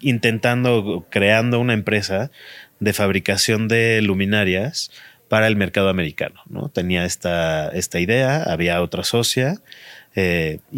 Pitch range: 90-110 Hz